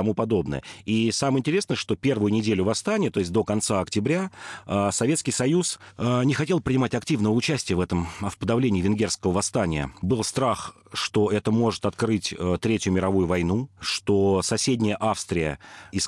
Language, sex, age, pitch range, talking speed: Russian, male, 40-59, 95-120 Hz, 140 wpm